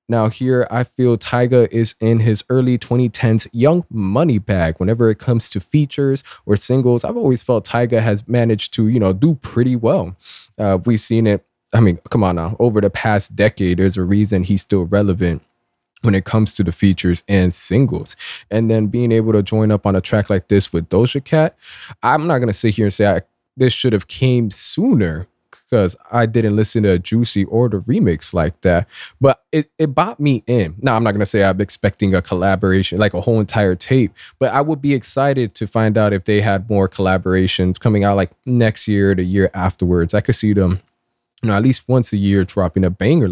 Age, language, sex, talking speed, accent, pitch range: 20-39, English, male, 215 wpm, American, 100-125 Hz